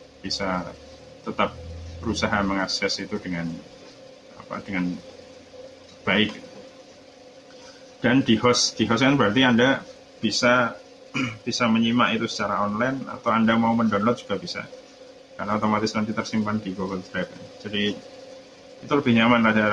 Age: 20-39